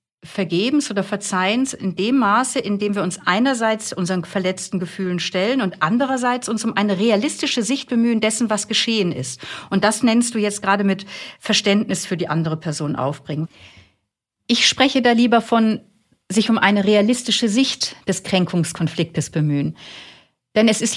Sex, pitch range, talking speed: female, 180-235 Hz, 160 wpm